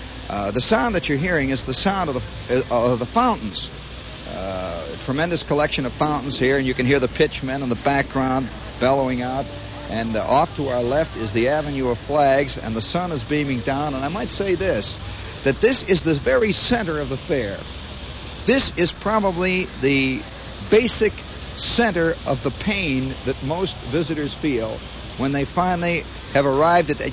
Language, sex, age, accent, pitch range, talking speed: English, male, 50-69, American, 130-175 Hz, 185 wpm